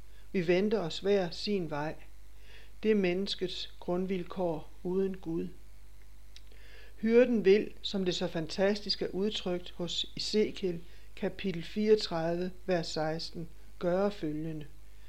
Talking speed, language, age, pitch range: 110 wpm, Danish, 60-79, 165-195 Hz